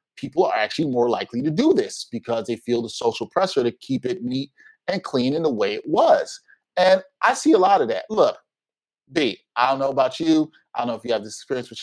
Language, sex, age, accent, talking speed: English, male, 30-49, American, 245 wpm